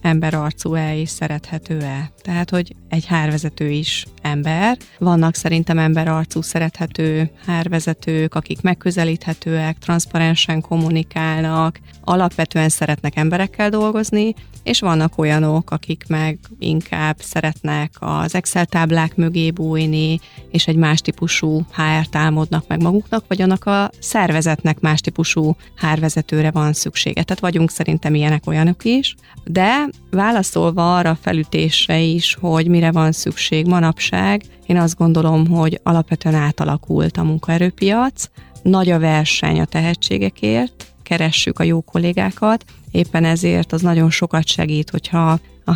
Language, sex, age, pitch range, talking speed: Hungarian, female, 30-49, 155-175 Hz, 120 wpm